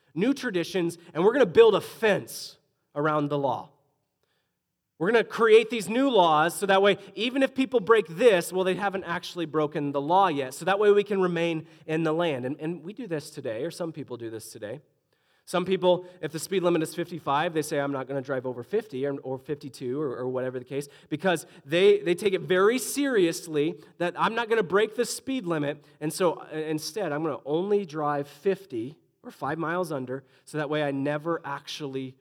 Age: 30-49